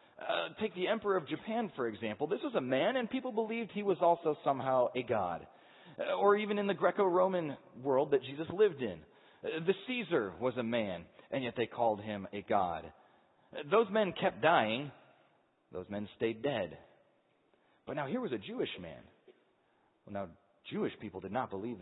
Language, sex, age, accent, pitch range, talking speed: English, male, 30-49, American, 95-150 Hz, 185 wpm